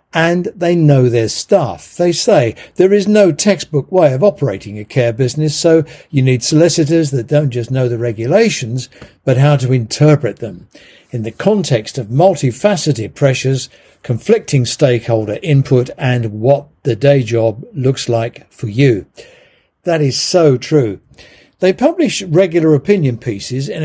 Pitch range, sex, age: 120-165 Hz, male, 60-79